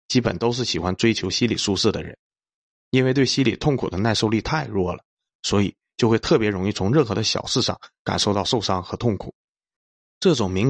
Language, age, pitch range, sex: Chinese, 20-39, 95-120 Hz, male